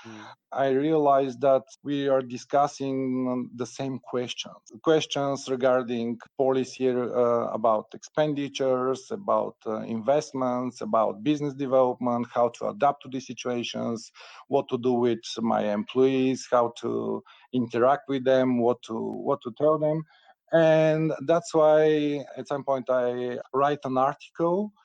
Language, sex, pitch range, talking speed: English, male, 120-140 Hz, 135 wpm